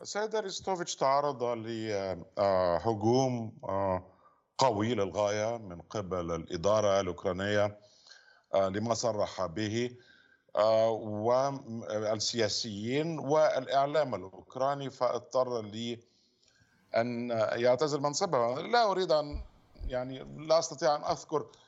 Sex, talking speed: male, 80 wpm